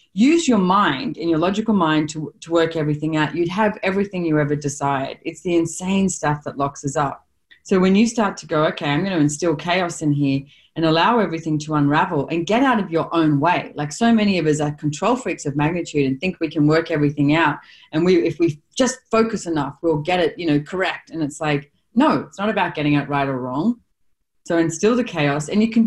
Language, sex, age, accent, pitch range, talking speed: English, female, 30-49, Australian, 150-195 Hz, 235 wpm